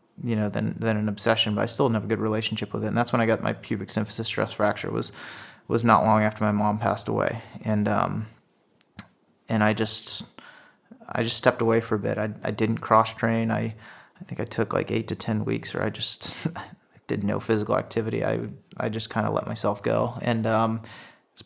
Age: 30-49